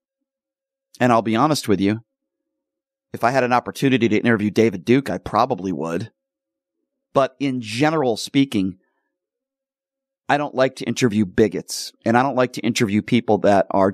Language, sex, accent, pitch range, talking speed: English, male, American, 105-145 Hz, 160 wpm